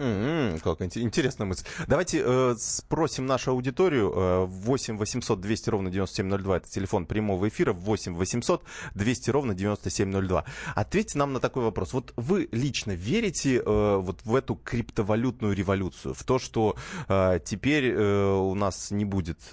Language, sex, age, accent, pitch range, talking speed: Russian, male, 20-39, native, 95-125 Hz, 130 wpm